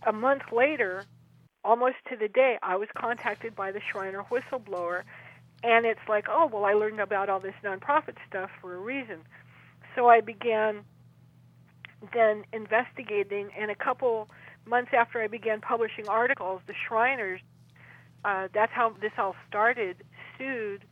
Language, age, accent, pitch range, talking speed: English, 50-69, American, 195-235 Hz, 150 wpm